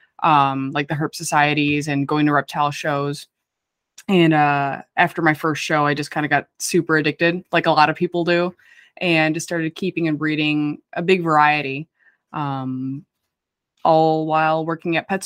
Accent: American